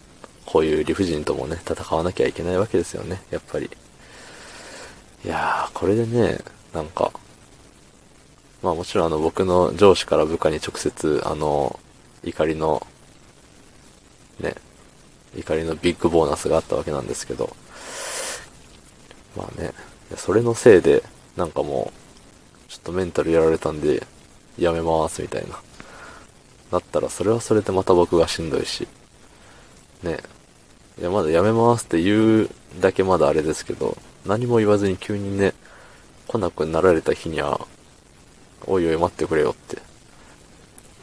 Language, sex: Japanese, male